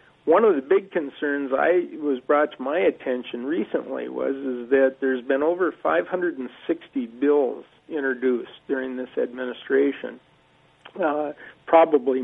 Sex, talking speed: male, 125 wpm